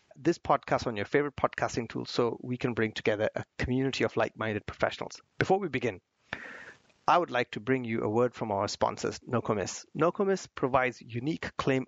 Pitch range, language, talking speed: 115-145 Hz, English, 180 wpm